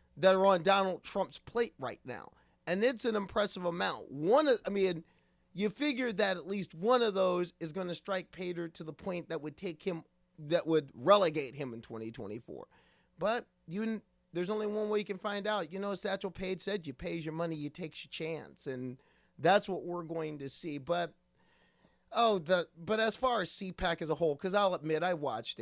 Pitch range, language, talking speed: 150-195 Hz, English, 210 wpm